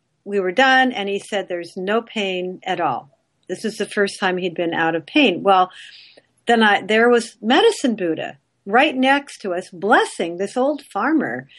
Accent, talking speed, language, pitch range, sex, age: American, 185 wpm, English, 205-300 Hz, female, 50-69